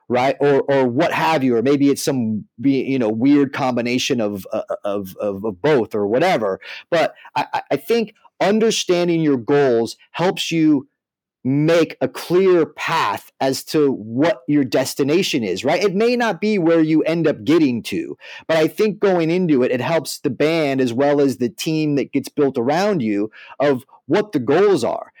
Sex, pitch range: male, 125-165 Hz